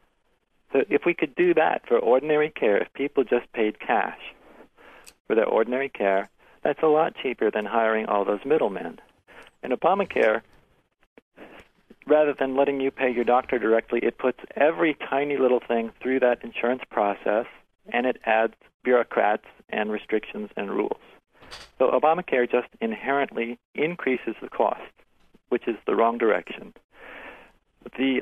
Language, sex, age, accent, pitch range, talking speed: English, male, 50-69, American, 115-145 Hz, 145 wpm